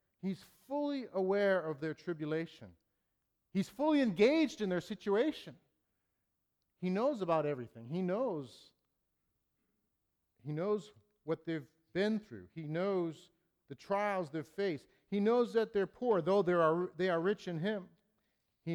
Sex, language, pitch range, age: male, English, 145-200 Hz, 50-69